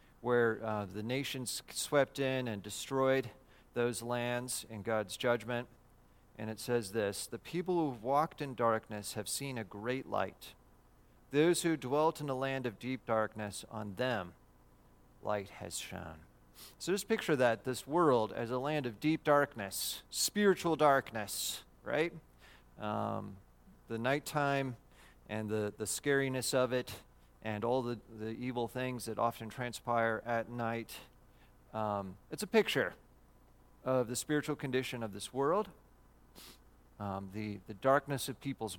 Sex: male